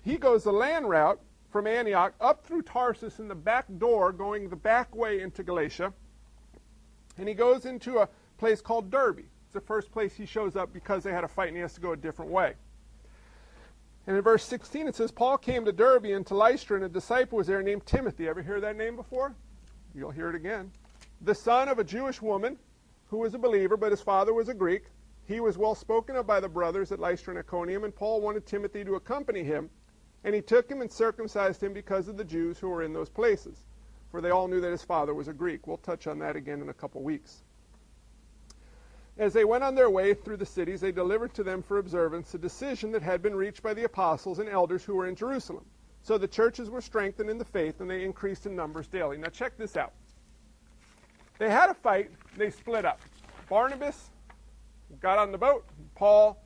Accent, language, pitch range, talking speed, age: American, English, 185-230 Hz, 220 wpm, 50-69